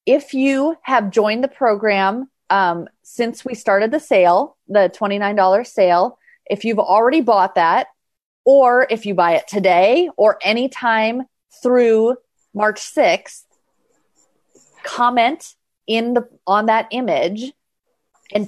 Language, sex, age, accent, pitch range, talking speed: English, female, 30-49, American, 190-235 Hz, 125 wpm